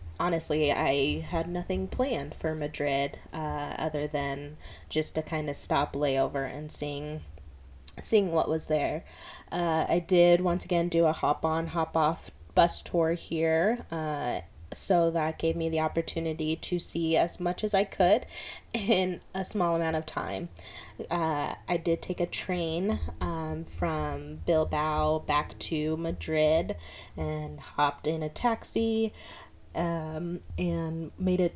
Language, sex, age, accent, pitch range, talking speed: English, female, 20-39, American, 145-175 Hz, 145 wpm